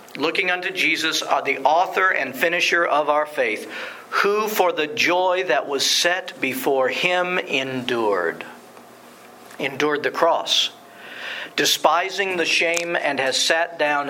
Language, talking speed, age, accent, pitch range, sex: English, 130 wpm, 50-69, American, 145-185 Hz, male